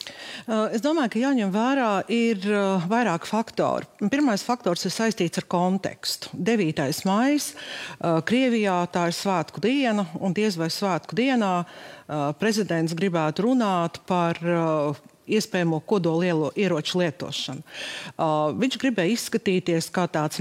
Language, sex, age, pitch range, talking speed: English, female, 50-69, 175-235 Hz, 130 wpm